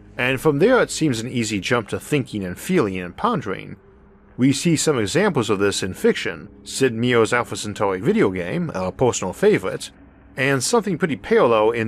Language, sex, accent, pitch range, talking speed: English, male, American, 100-140 Hz, 180 wpm